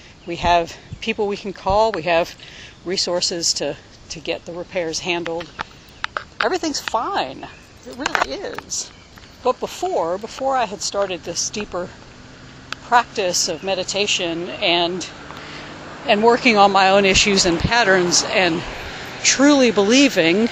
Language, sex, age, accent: English, female, 50-69, American